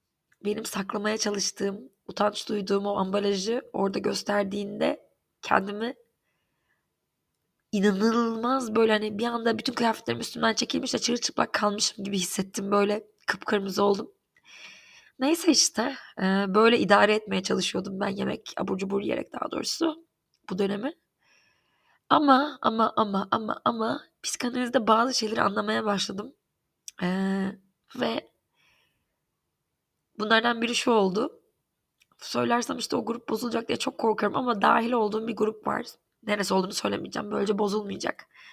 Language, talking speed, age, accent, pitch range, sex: Turkish, 120 wpm, 20-39, native, 205-240 Hz, female